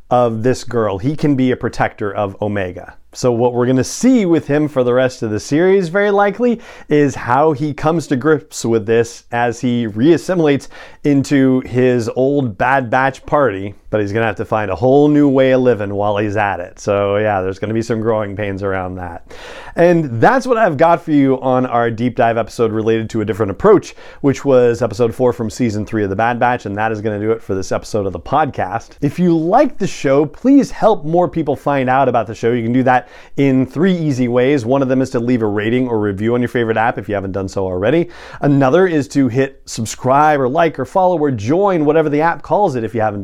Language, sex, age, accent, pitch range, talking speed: English, male, 40-59, American, 115-150 Hz, 240 wpm